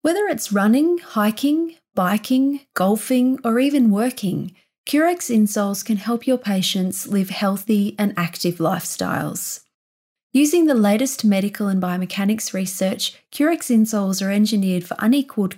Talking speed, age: 125 wpm, 30-49